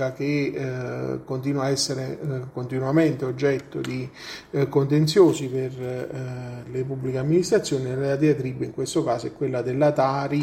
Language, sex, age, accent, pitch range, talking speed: Italian, male, 40-59, native, 125-145 Hz, 145 wpm